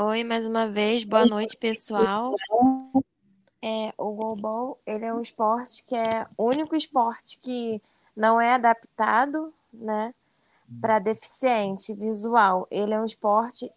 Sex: female